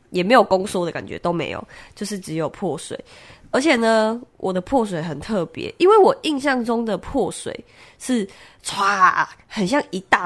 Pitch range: 160-215 Hz